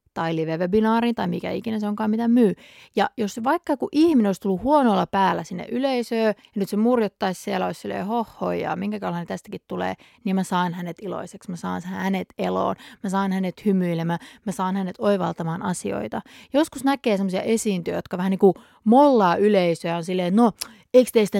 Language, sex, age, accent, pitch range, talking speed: Finnish, female, 30-49, native, 185-235 Hz, 190 wpm